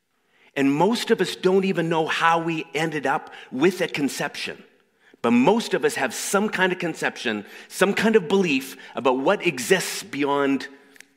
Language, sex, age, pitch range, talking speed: English, male, 40-59, 145-215 Hz, 165 wpm